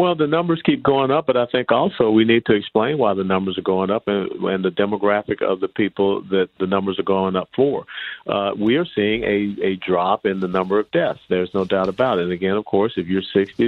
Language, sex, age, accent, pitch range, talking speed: English, male, 50-69, American, 95-105 Hz, 255 wpm